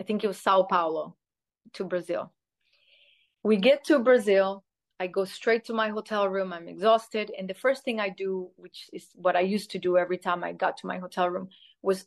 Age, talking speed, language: 30-49, 215 wpm, English